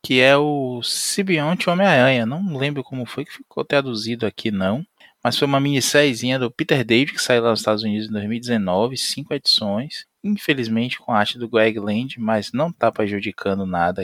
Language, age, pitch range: Portuguese, 20-39, 100-125 Hz